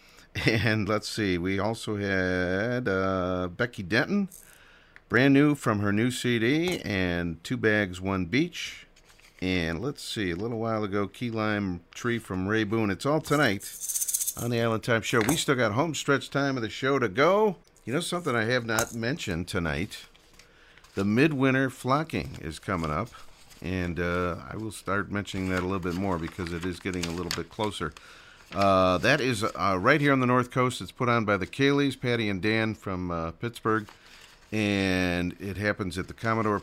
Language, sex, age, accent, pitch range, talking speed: English, male, 50-69, American, 95-125 Hz, 185 wpm